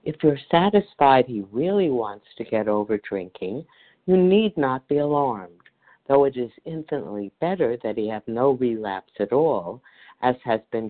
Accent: American